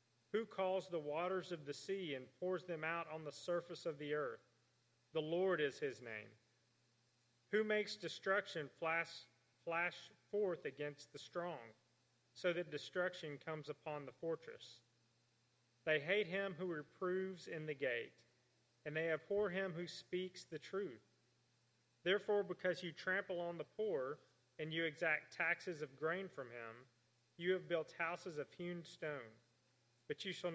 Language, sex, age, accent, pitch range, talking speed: English, male, 40-59, American, 125-180 Hz, 155 wpm